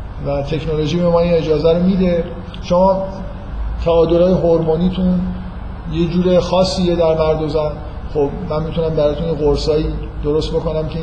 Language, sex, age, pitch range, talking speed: Persian, male, 50-69, 155-175 Hz, 125 wpm